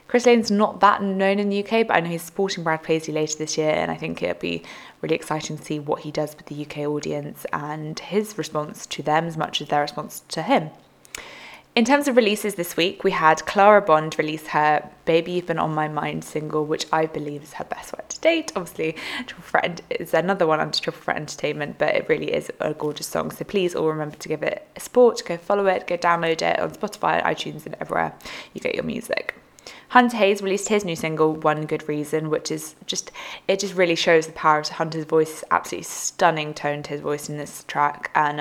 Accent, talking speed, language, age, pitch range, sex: British, 225 wpm, English, 20-39, 155-195 Hz, female